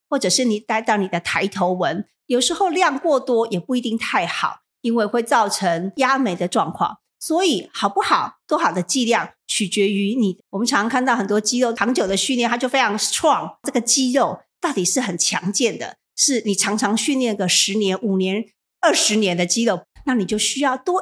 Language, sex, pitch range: Chinese, female, 195-255 Hz